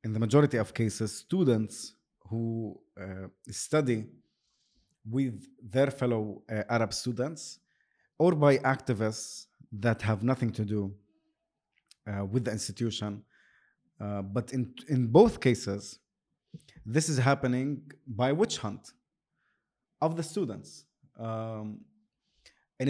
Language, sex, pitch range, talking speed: Arabic, male, 115-145 Hz, 115 wpm